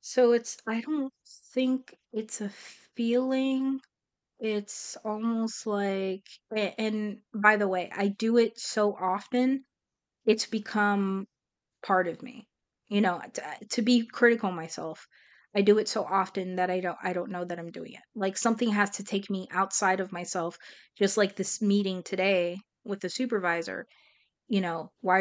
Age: 20-39